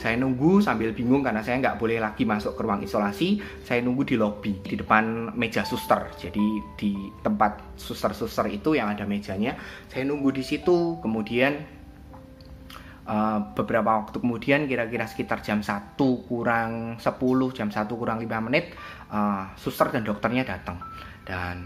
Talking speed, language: 150 wpm, Indonesian